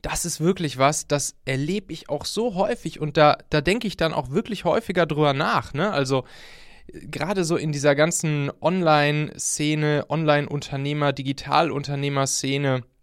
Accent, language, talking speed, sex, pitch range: German, German, 140 wpm, male, 130-170 Hz